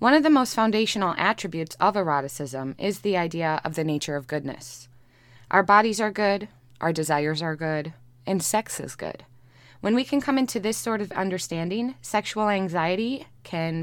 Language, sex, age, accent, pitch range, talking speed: English, female, 20-39, American, 150-210 Hz, 175 wpm